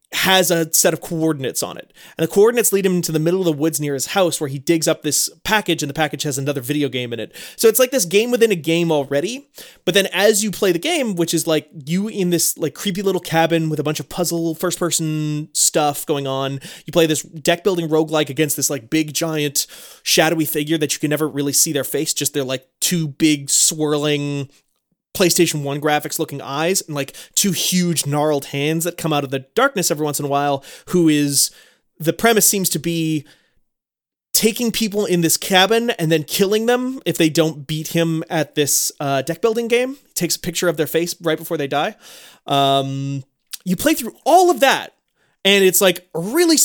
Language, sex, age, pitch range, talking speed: English, male, 30-49, 150-185 Hz, 220 wpm